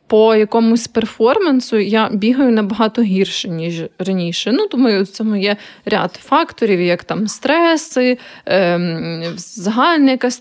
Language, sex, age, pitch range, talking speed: Ukrainian, female, 20-39, 210-250 Hz, 120 wpm